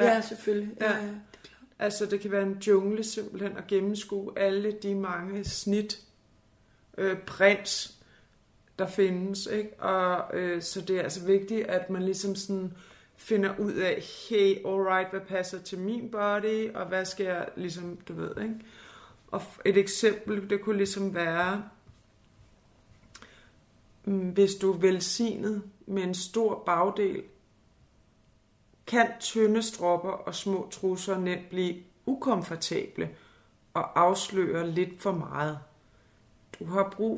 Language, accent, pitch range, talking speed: Danish, native, 175-210 Hz, 130 wpm